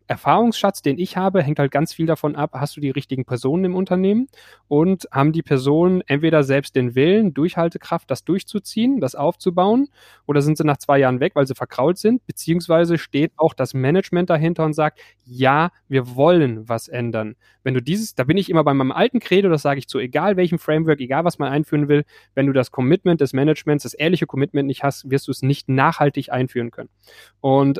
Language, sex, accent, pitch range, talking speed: German, male, German, 135-175 Hz, 205 wpm